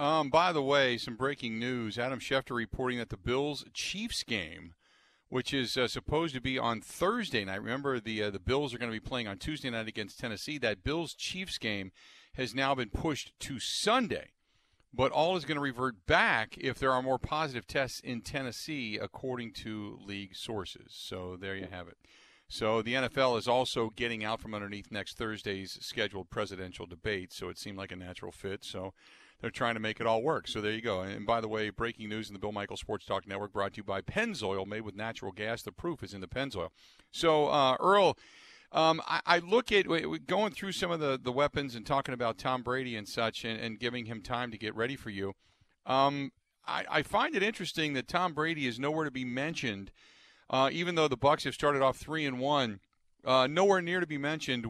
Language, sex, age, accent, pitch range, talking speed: English, male, 50-69, American, 110-145 Hz, 215 wpm